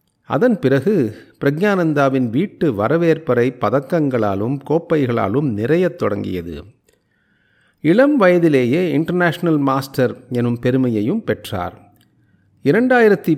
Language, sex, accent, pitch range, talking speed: Tamil, male, native, 120-170 Hz, 75 wpm